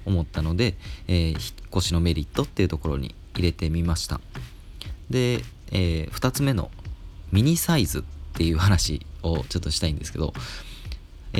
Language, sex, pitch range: Japanese, male, 80-105 Hz